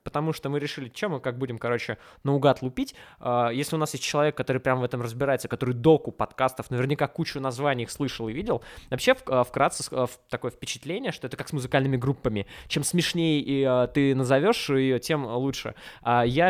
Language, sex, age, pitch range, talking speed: Russian, male, 20-39, 125-150 Hz, 180 wpm